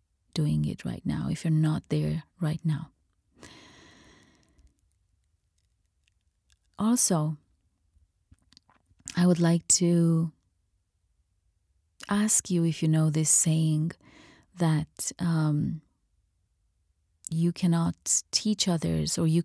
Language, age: English, 30-49